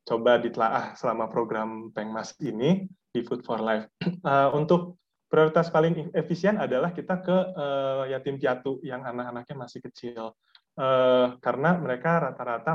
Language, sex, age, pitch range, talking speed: Indonesian, male, 20-39, 125-165 Hz, 135 wpm